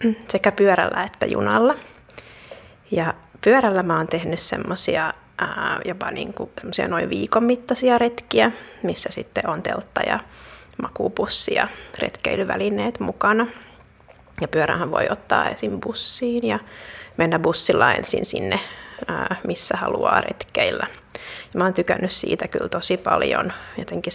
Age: 30-49